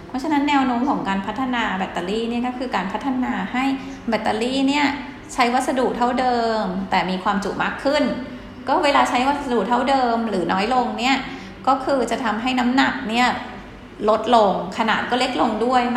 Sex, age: female, 20-39